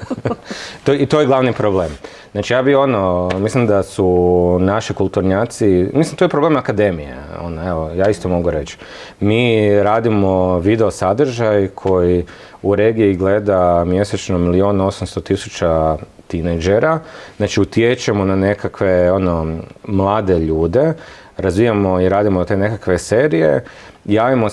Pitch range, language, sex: 90-115 Hz, Croatian, male